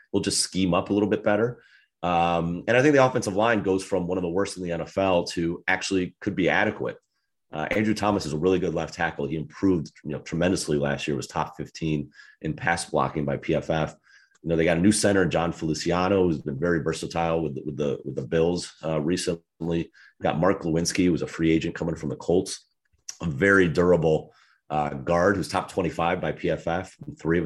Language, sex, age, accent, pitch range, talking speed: English, male, 30-49, American, 80-95 Hz, 225 wpm